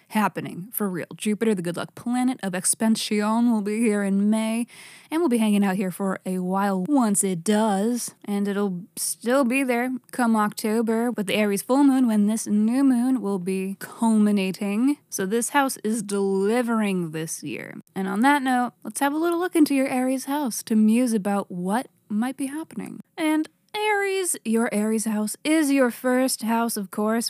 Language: English